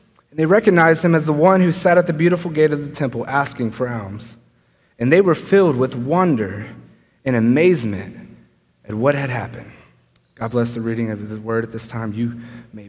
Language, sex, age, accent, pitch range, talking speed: English, male, 30-49, American, 130-210 Hz, 200 wpm